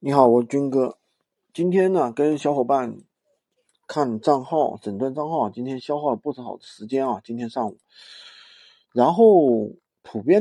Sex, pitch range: male, 135-225 Hz